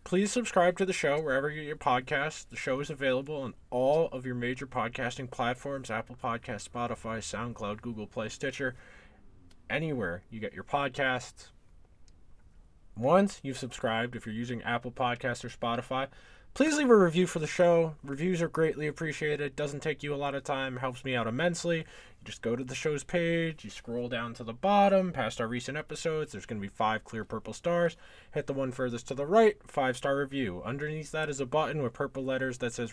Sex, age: male, 20-39